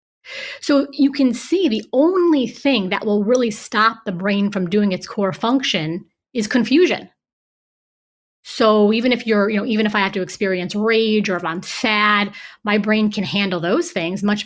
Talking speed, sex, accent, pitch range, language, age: 185 wpm, female, American, 195-250 Hz, English, 30-49